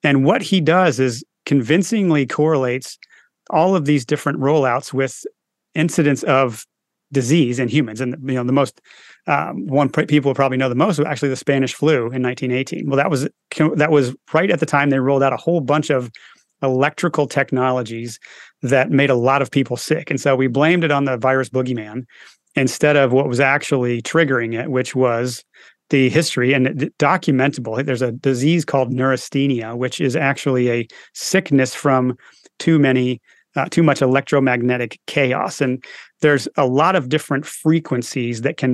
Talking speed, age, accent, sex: 170 wpm, 30-49, American, male